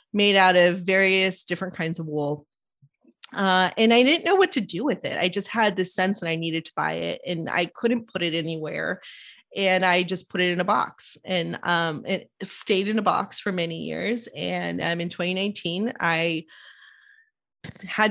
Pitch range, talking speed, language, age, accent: 170-205 Hz, 190 wpm, English, 20-39, American